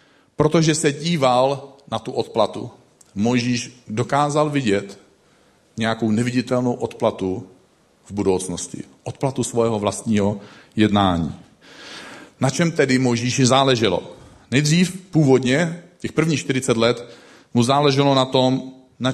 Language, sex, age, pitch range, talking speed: Czech, male, 40-59, 115-150 Hz, 105 wpm